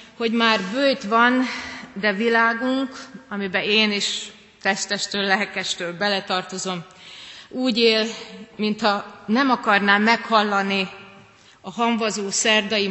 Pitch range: 195-235 Hz